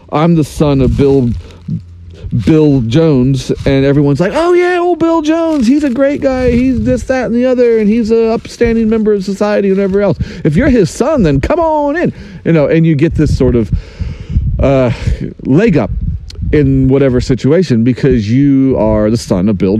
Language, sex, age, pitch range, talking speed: English, male, 40-59, 110-140 Hz, 195 wpm